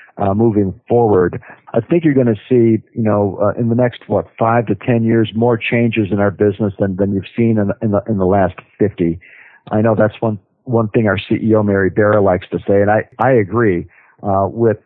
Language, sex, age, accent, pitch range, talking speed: English, male, 50-69, American, 100-115 Hz, 225 wpm